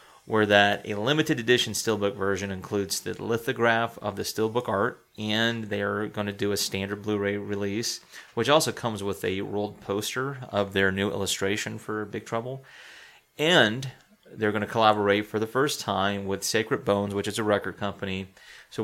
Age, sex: 30-49, male